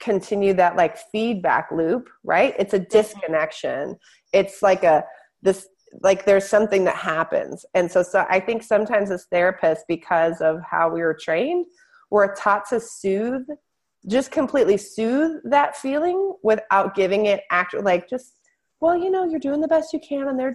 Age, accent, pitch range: 30-49, American, 175-260 Hz